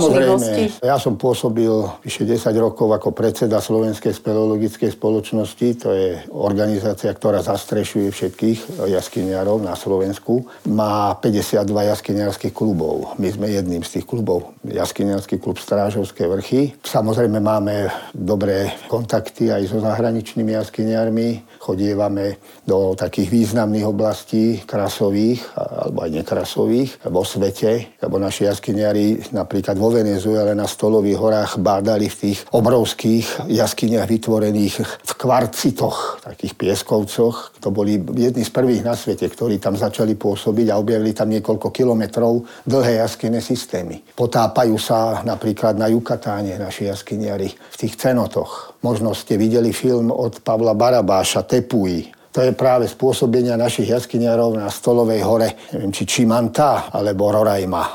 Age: 50-69